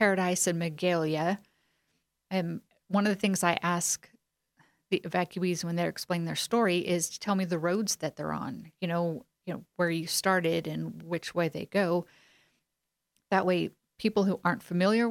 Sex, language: female, English